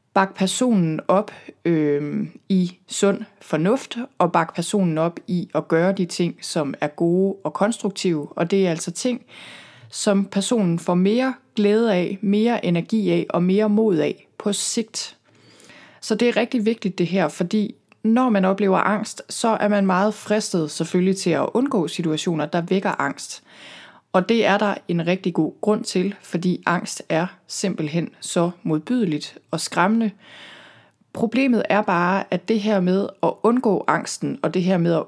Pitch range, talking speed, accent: 175-215 Hz, 165 wpm, native